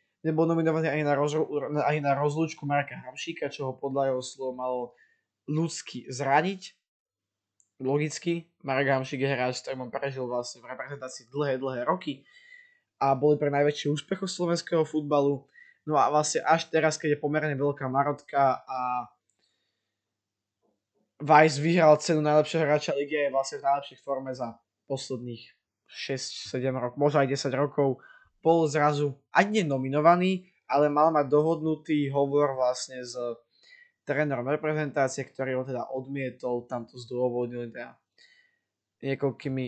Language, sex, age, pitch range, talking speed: Slovak, male, 20-39, 125-150 Hz, 130 wpm